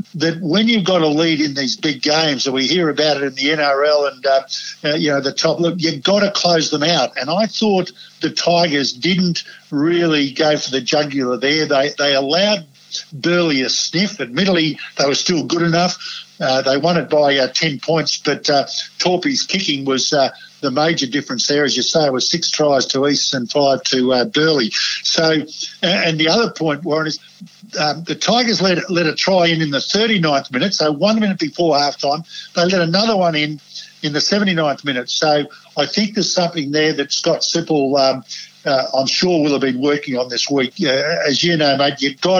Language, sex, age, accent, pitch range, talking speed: English, male, 50-69, Australian, 140-175 Hz, 210 wpm